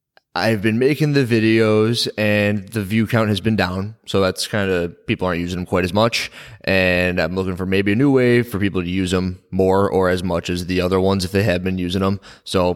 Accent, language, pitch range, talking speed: American, English, 90-110 Hz, 240 wpm